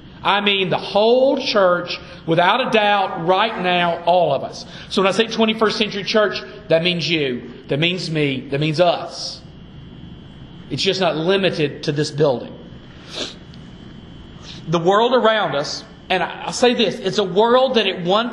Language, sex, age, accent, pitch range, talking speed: English, male, 40-59, American, 175-225 Hz, 165 wpm